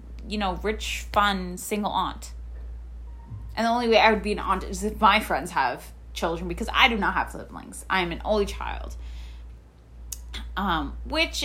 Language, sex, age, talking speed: English, female, 10-29, 180 wpm